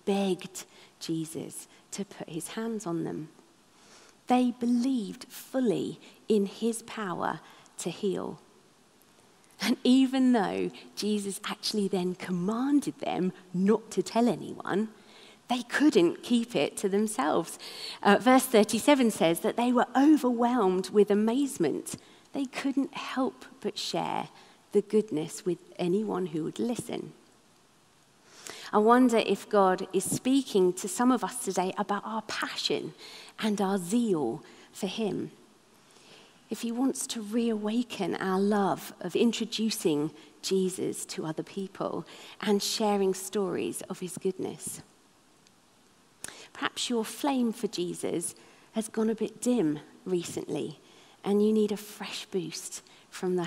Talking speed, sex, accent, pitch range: 125 wpm, female, British, 185-235 Hz